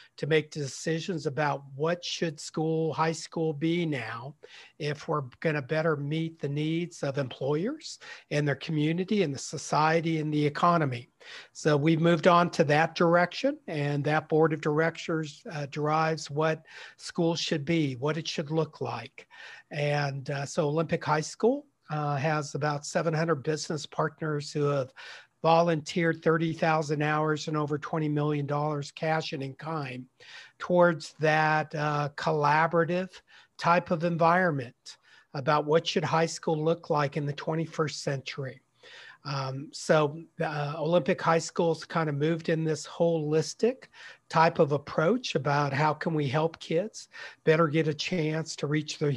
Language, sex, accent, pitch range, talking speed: English, male, American, 150-165 Hz, 150 wpm